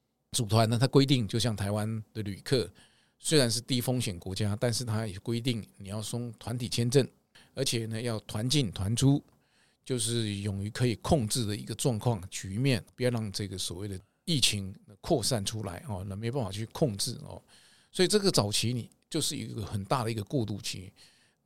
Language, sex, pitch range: Chinese, male, 100-120 Hz